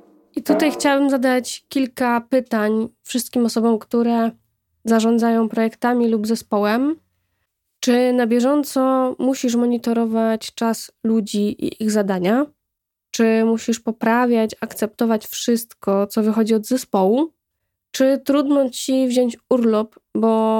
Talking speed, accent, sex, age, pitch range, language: 110 wpm, native, female, 10-29, 220-255 Hz, Polish